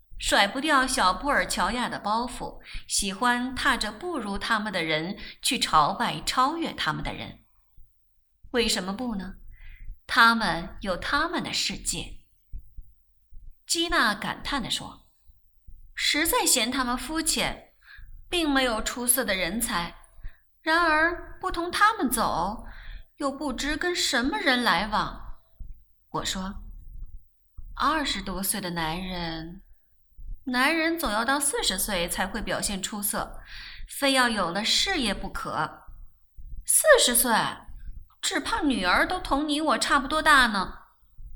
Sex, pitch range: female, 200-290 Hz